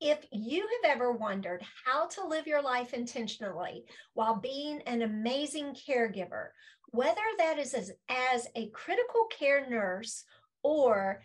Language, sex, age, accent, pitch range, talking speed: English, female, 40-59, American, 220-280 Hz, 140 wpm